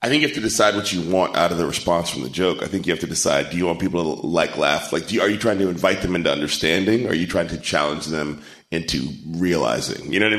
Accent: American